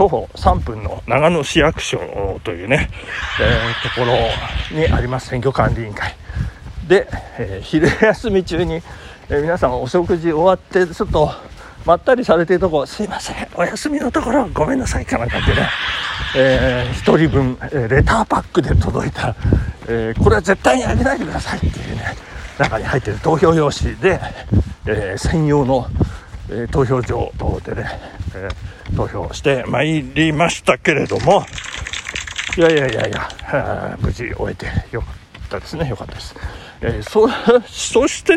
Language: Japanese